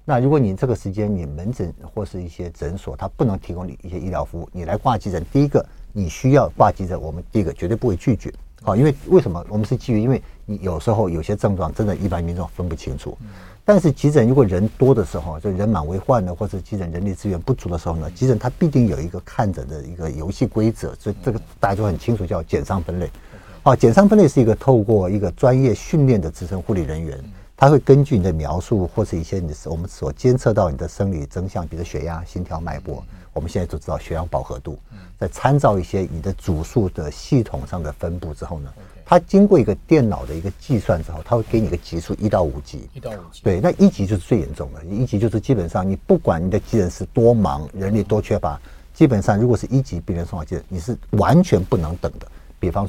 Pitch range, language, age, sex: 85-115 Hz, Chinese, 50-69, male